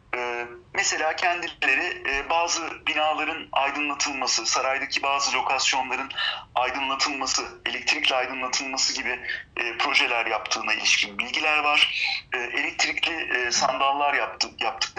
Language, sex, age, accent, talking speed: Turkish, male, 40-59, native, 80 wpm